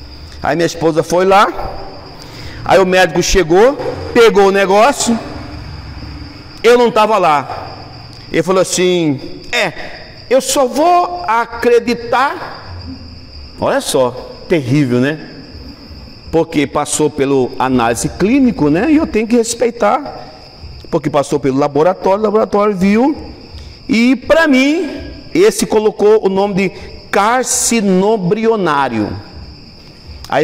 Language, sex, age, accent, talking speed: Portuguese, male, 50-69, Brazilian, 110 wpm